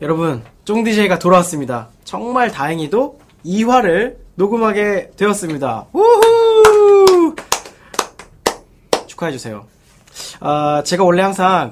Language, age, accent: Korean, 20-39, native